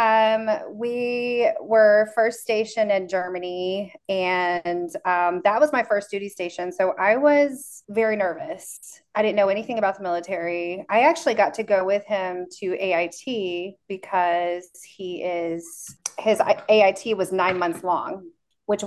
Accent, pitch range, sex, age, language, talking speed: American, 180-225 Hz, female, 30-49, English, 145 wpm